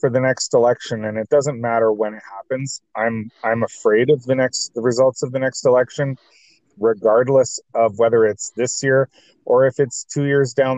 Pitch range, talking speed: 115-135 Hz, 195 wpm